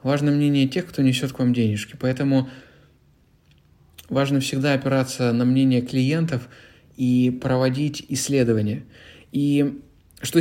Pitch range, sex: 125-150 Hz, male